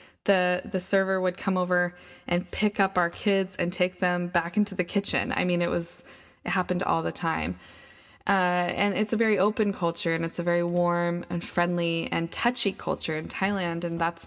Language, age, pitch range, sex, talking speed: English, 20-39, 175-200 Hz, female, 200 wpm